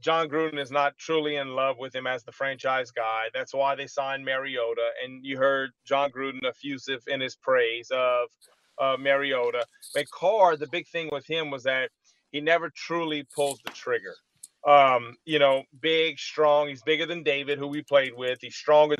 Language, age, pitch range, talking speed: English, 30-49, 135-150 Hz, 190 wpm